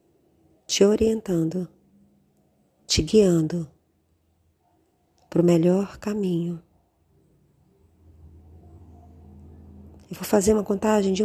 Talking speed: 80 wpm